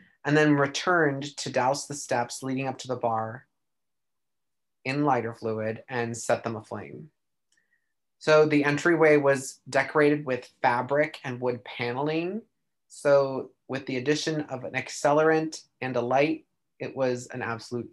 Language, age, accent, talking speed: English, 30-49, American, 145 wpm